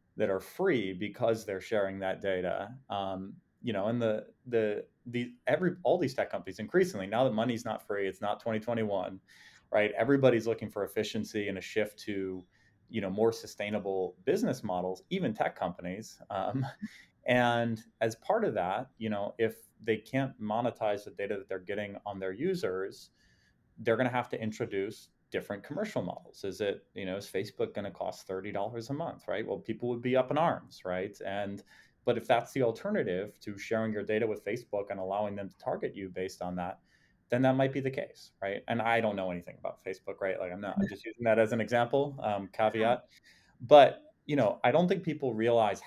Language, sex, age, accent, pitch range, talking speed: English, male, 30-49, American, 95-115 Hz, 200 wpm